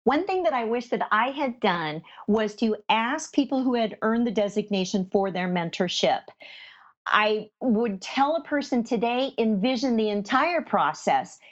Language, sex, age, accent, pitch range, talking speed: English, female, 40-59, American, 200-265 Hz, 160 wpm